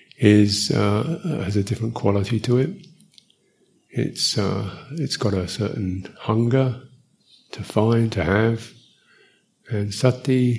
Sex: male